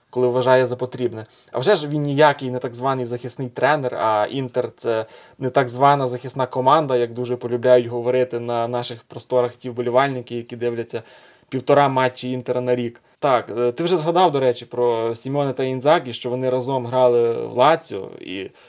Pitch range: 120-140 Hz